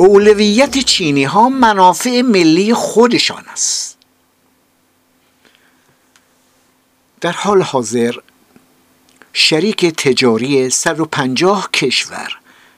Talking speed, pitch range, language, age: 75 wpm, 150-210 Hz, Persian, 60-79